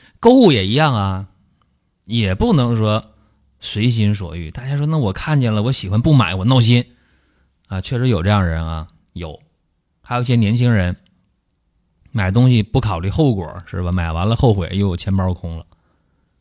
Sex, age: male, 30-49